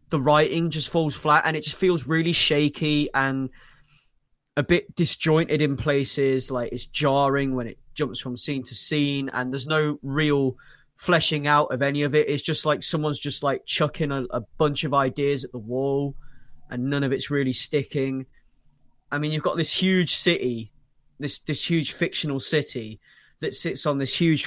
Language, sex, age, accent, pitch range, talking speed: English, male, 20-39, British, 130-150 Hz, 185 wpm